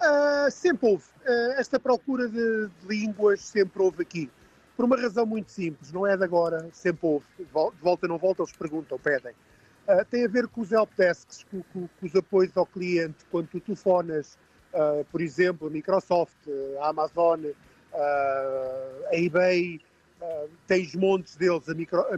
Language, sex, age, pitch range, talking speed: Portuguese, male, 50-69, 170-205 Hz, 175 wpm